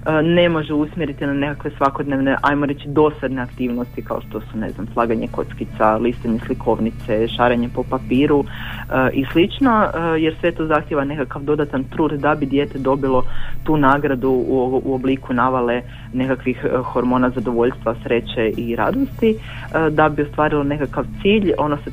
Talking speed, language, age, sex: 155 wpm, Croatian, 30-49, female